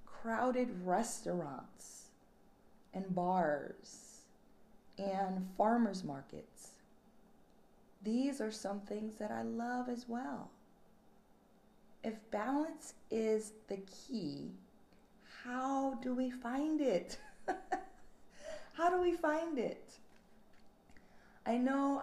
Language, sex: English, female